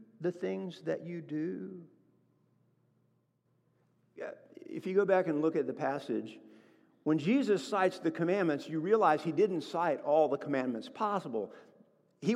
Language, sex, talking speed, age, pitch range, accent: English, male, 140 wpm, 50-69, 150-215 Hz, American